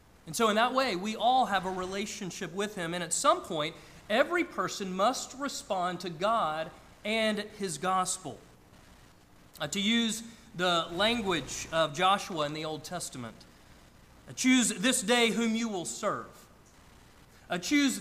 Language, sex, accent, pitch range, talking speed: English, male, American, 170-225 Hz, 145 wpm